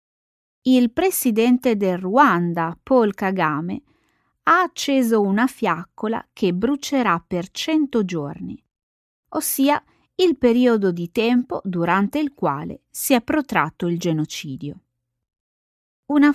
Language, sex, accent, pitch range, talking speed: Italian, female, native, 175-255 Hz, 105 wpm